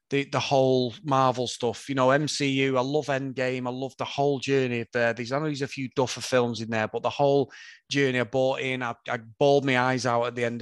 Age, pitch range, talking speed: 30-49, 120-145 Hz, 250 wpm